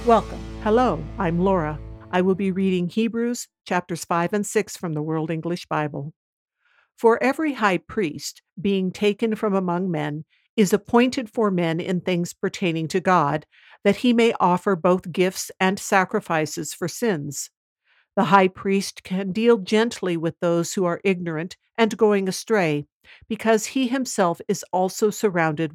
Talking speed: 155 wpm